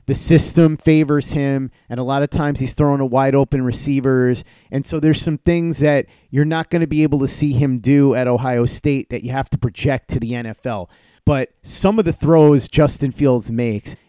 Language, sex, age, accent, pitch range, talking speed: English, male, 30-49, American, 125-155 Hz, 210 wpm